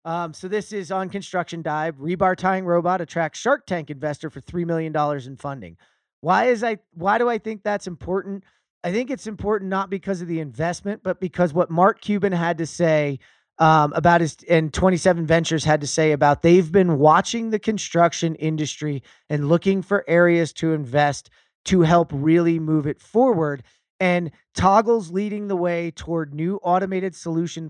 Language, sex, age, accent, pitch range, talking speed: English, male, 30-49, American, 150-185 Hz, 180 wpm